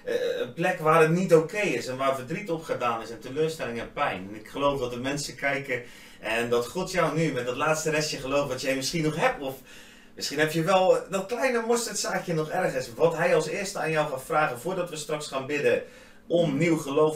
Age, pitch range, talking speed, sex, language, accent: 30-49, 110-160 Hz, 225 wpm, male, Dutch, Dutch